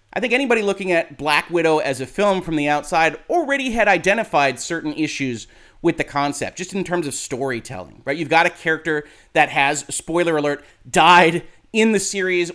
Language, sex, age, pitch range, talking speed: English, male, 30-49, 145-195 Hz, 185 wpm